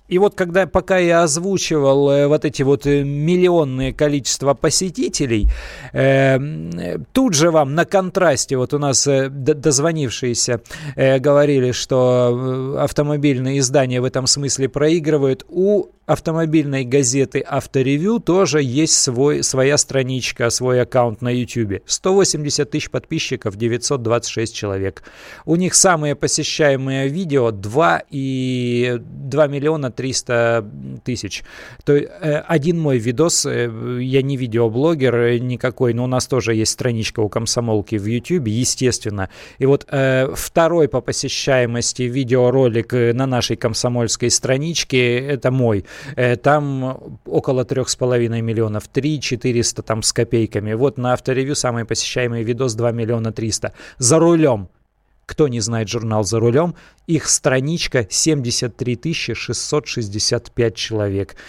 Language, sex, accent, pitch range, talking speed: Russian, male, native, 120-150 Hz, 120 wpm